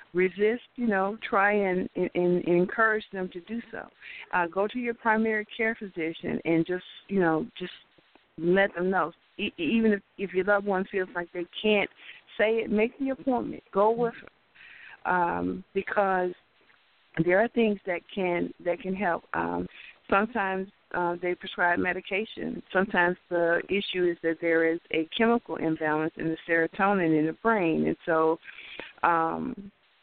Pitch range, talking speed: 170-205 Hz, 160 wpm